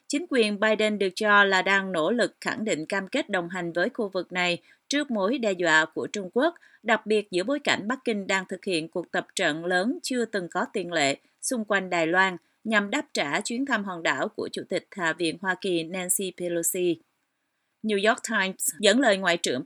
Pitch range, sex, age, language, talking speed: 185-235 Hz, female, 30-49, Vietnamese, 220 wpm